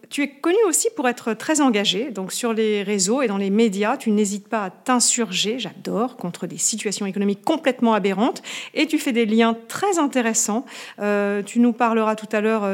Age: 40-59